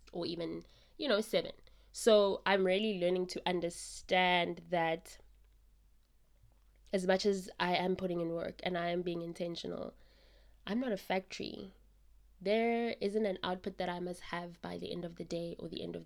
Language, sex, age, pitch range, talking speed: English, female, 20-39, 175-195 Hz, 175 wpm